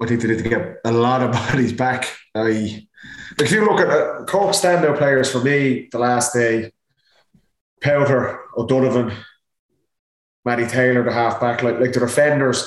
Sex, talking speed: male, 170 wpm